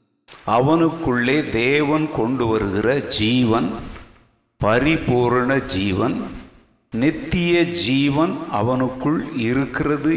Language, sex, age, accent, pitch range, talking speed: Tamil, male, 60-79, native, 110-155 Hz, 65 wpm